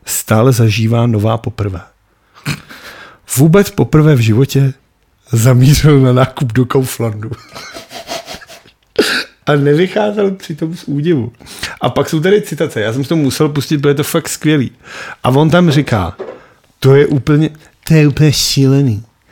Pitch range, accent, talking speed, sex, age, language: 120-155 Hz, native, 130 wpm, male, 40-59, Czech